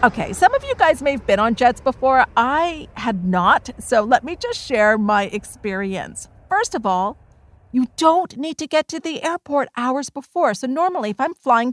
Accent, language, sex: American, English, female